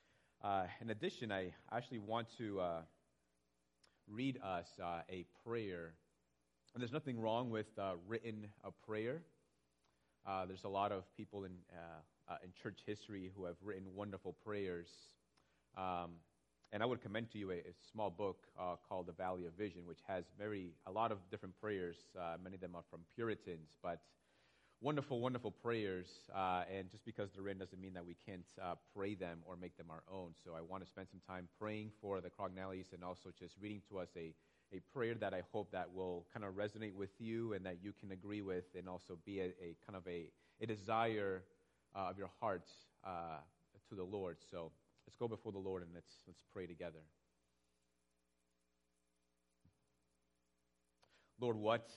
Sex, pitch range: male, 85-105 Hz